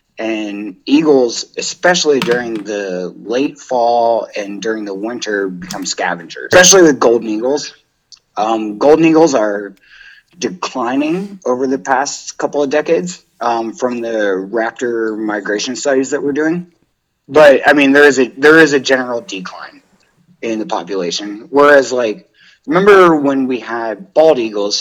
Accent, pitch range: American, 105-145 Hz